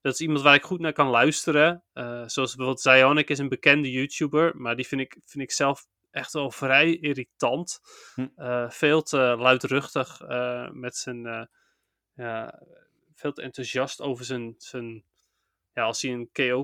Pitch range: 125-145 Hz